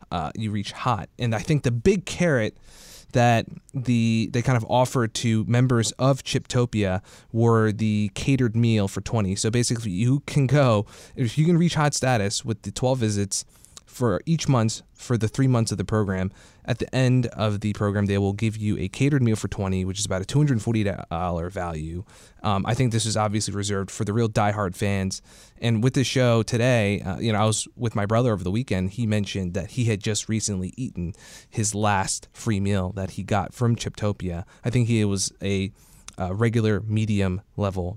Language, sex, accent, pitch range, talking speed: English, male, American, 100-125 Hz, 205 wpm